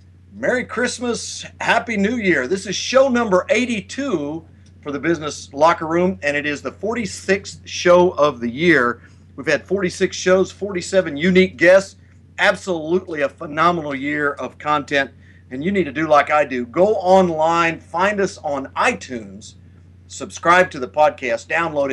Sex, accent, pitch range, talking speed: male, American, 125-180 Hz, 155 wpm